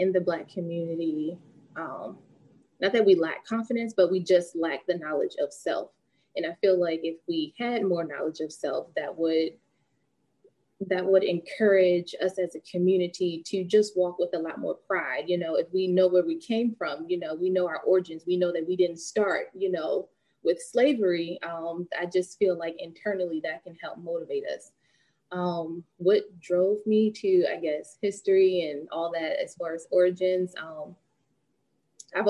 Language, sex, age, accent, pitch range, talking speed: English, female, 20-39, American, 165-205 Hz, 185 wpm